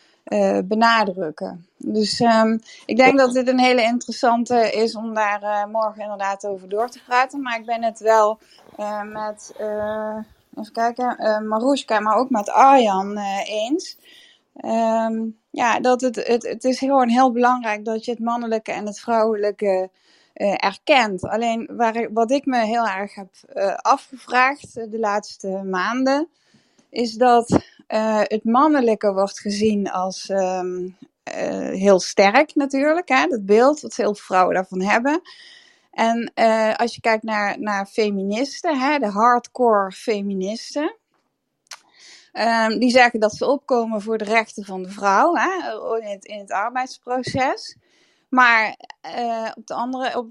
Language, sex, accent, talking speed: Dutch, female, Dutch, 140 wpm